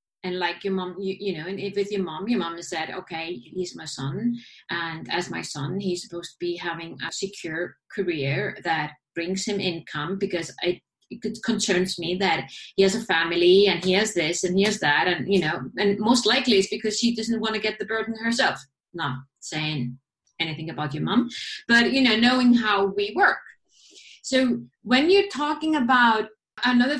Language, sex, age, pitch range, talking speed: English, female, 30-49, 175-235 Hz, 200 wpm